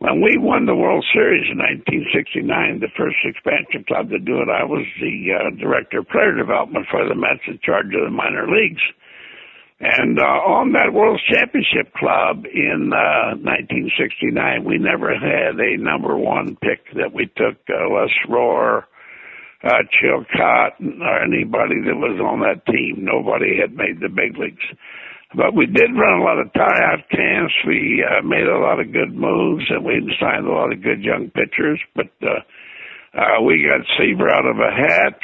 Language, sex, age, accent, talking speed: English, male, 60-79, American, 180 wpm